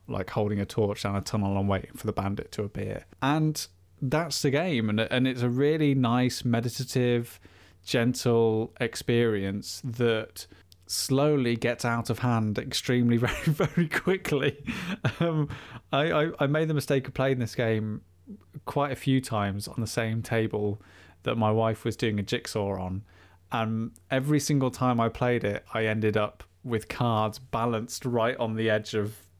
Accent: British